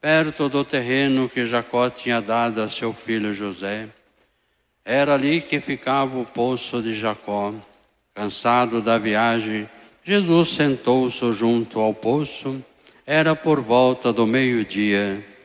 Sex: male